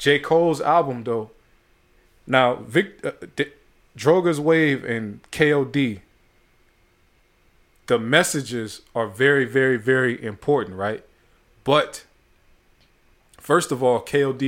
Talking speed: 105 wpm